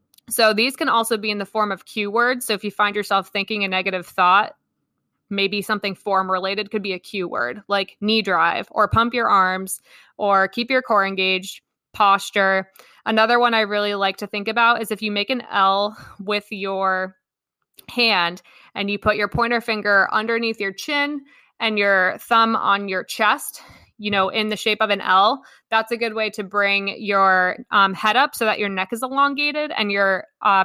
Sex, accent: female, American